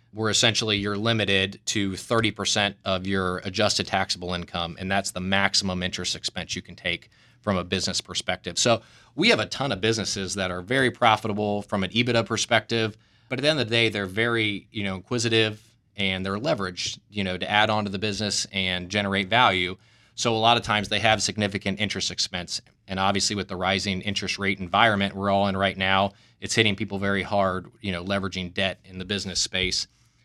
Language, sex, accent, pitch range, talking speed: English, male, American, 95-115 Hz, 200 wpm